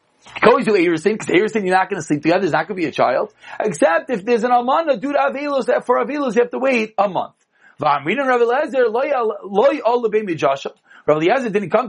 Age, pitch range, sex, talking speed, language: 40-59, 215-275 Hz, male, 200 wpm, English